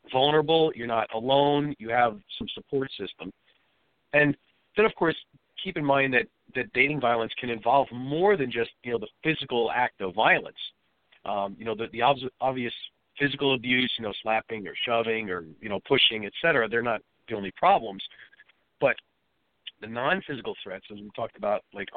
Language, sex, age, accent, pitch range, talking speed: English, male, 50-69, American, 115-135 Hz, 180 wpm